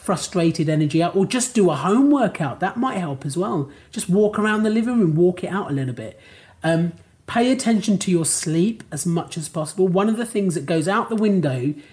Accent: British